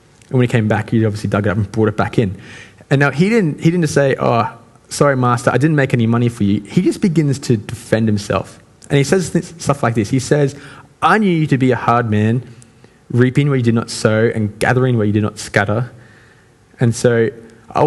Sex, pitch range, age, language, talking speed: male, 105-135 Hz, 20-39, English, 240 wpm